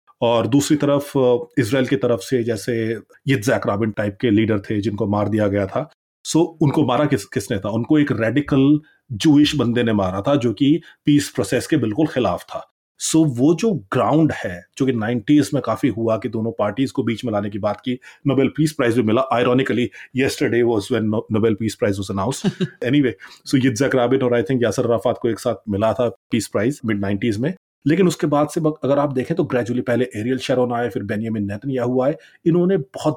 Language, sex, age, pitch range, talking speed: Punjabi, male, 30-49, 115-150 Hz, 190 wpm